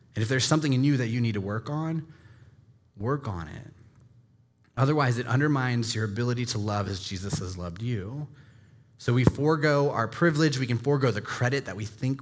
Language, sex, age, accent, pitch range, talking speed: English, male, 20-39, American, 110-130 Hz, 195 wpm